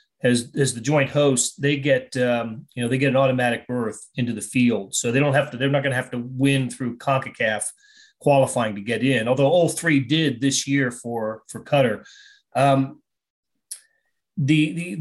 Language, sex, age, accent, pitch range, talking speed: English, male, 30-49, American, 125-150 Hz, 190 wpm